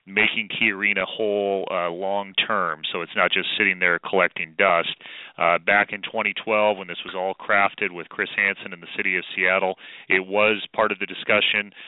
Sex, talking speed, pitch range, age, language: male, 190 wpm, 95-105 Hz, 30-49, English